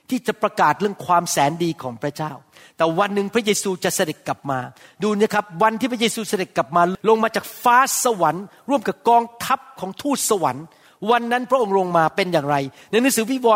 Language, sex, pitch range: Thai, male, 180-255 Hz